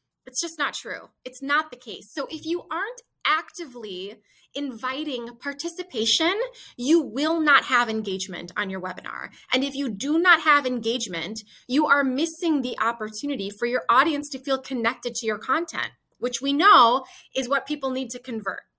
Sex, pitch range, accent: female, 230-315 Hz, American